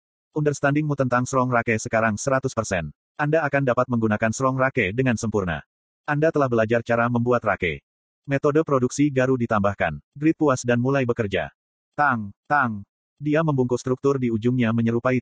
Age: 30-49